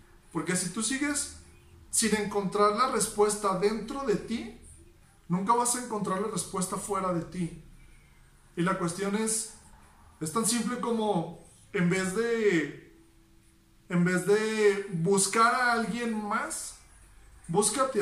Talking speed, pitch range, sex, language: 130 wpm, 180-220 Hz, male, Spanish